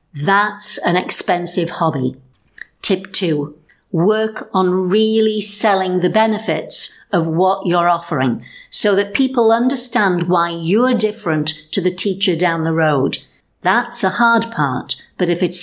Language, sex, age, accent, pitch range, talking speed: English, female, 50-69, British, 175-235 Hz, 140 wpm